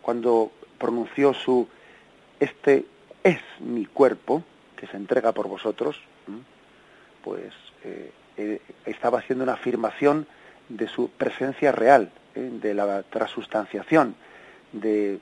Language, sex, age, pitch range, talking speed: Spanish, male, 40-59, 110-140 Hz, 105 wpm